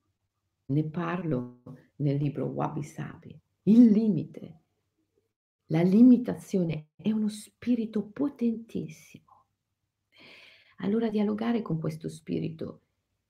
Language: Italian